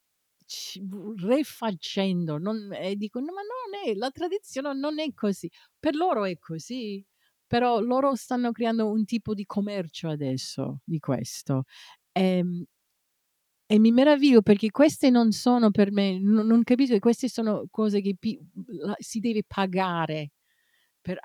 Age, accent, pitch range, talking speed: 50-69, native, 175-230 Hz, 135 wpm